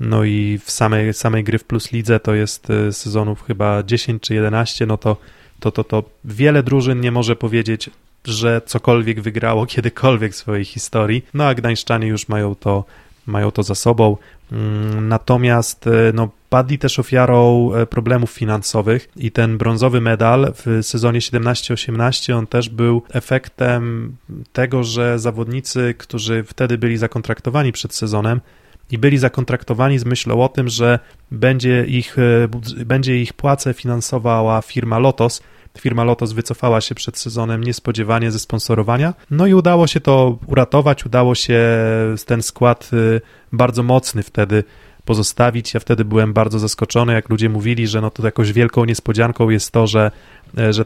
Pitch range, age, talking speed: 110-125 Hz, 20-39, 150 wpm